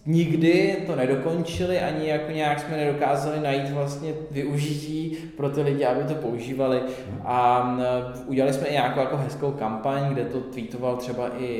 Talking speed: 155 wpm